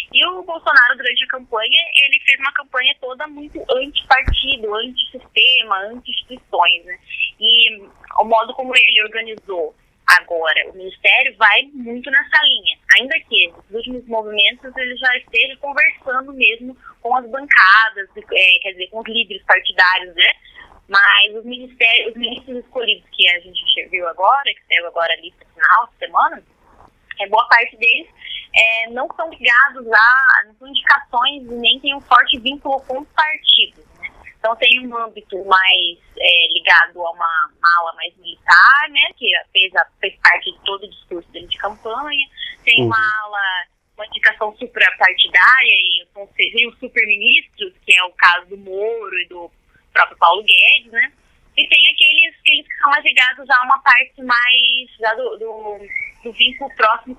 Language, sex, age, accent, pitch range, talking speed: Portuguese, female, 20-39, Brazilian, 205-280 Hz, 165 wpm